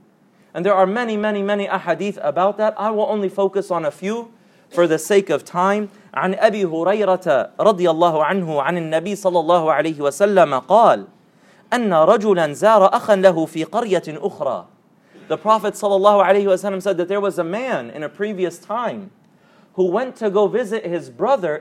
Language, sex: English, male